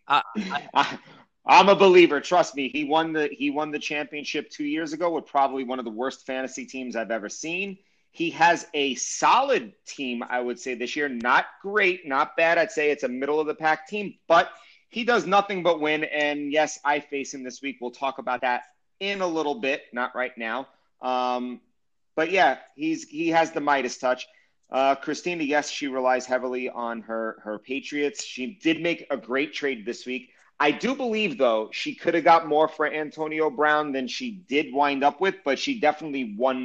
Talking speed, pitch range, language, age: 200 wpm, 125-175 Hz, English, 30-49